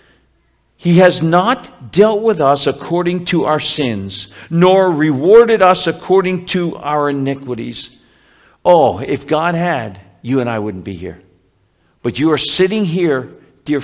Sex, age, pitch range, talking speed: male, 60-79, 120-180 Hz, 145 wpm